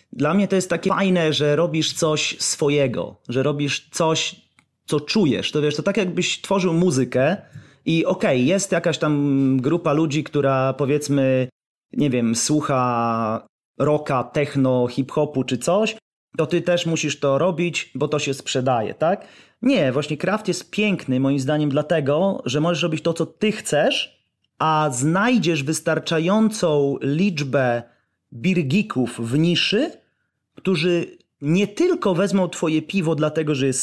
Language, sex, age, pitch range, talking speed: Polish, male, 30-49, 140-185 Hz, 145 wpm